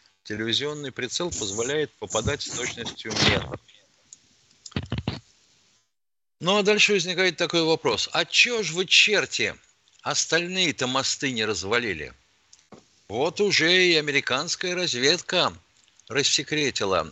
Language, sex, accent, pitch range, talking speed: Russian, male, native, 110-150 Hz, 100 wpm